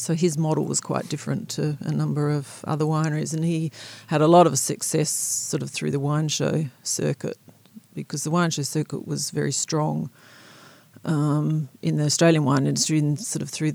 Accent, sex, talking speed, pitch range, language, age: Australian, female, 190 wpm, 145-165 Hz, English, 40-59